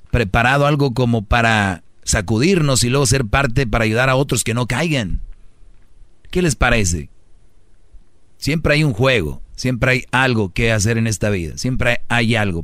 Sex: male